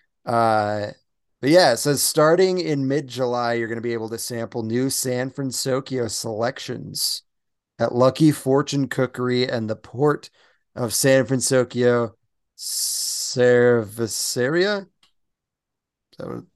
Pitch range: 115-135 Hz